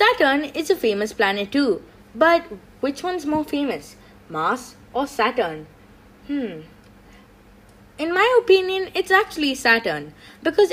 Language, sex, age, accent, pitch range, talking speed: English, female, 20-39, Indian, 195-325 Hz, 125 wpm